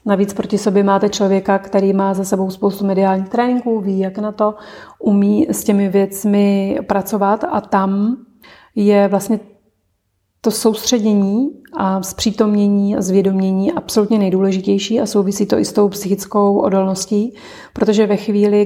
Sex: female